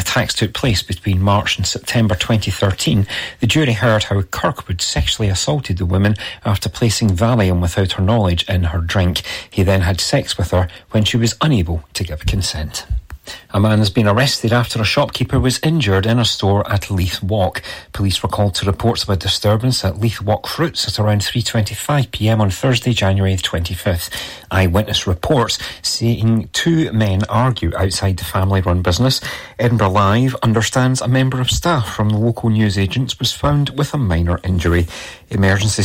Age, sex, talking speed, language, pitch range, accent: 40-59, male, 170 wpm, English, 95-120 Hz, British